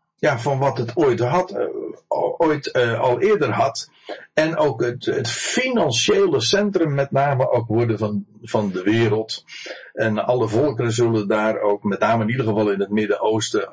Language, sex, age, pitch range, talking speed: Dutch, male, 50-69, 105-130 Hz, 170 wpm